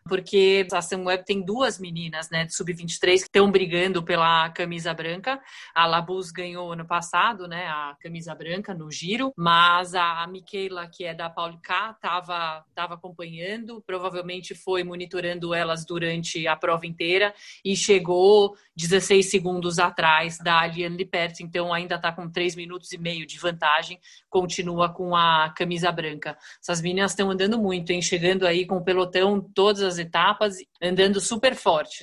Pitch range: 175-200 Hz